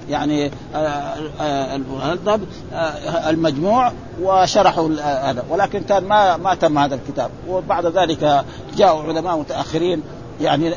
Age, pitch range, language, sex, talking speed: 50-69, 145-185 Hz, Arabic, male, 100 wpm